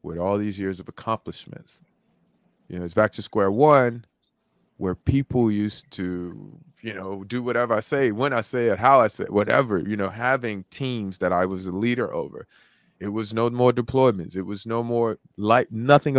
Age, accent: 30-49, American